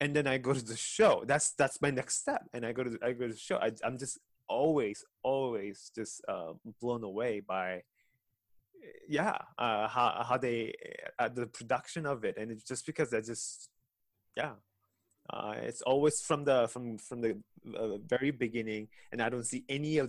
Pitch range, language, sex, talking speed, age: 115-150 Hz, English, male, 195 wpm, 20-39